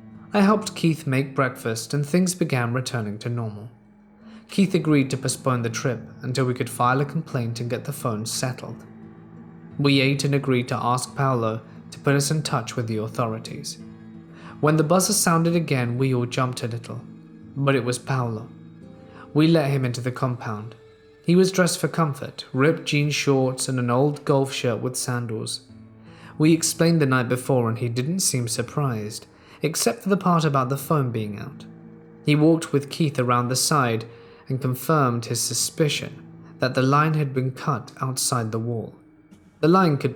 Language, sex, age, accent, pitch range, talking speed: English, male, 20-39, British, 120-150 Hz, 180 wpm